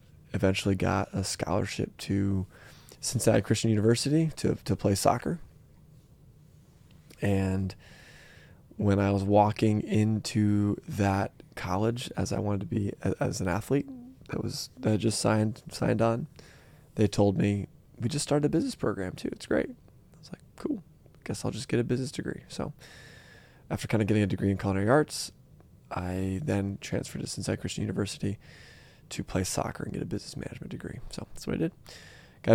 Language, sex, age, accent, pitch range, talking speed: English, male, 20-39, American, 100-125 Hz, 170 wpm